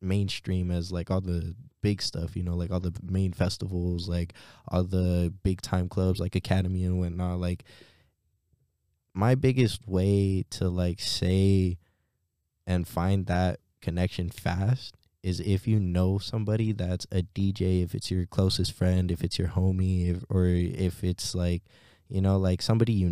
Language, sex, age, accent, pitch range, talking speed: English, male, 20-39, American, 90-100 Hz, 160 wpm